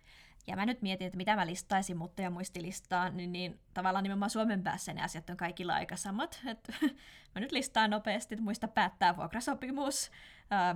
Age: 20-39